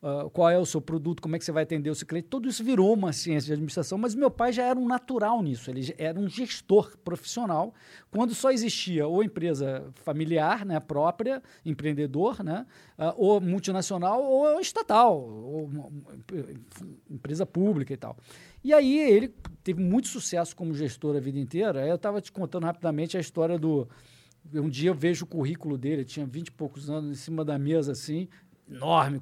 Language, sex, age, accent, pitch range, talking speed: Portuguese, male, 50-69, Brazilian, 145-210 Hz, 185 wpm